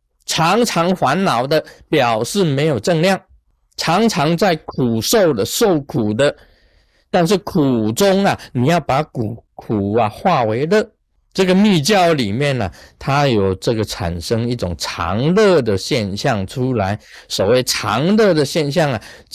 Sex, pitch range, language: male, 110-165 Hz, Chinese